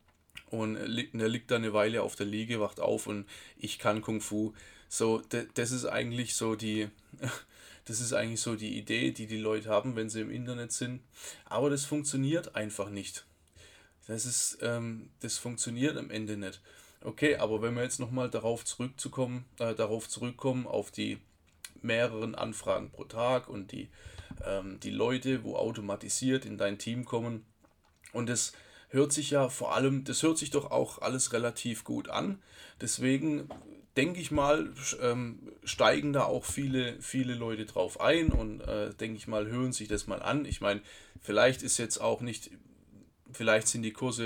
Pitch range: 110-125 Hz